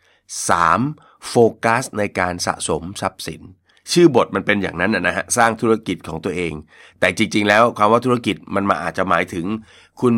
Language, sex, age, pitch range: Thai, male, 30-49, 90-115 Hz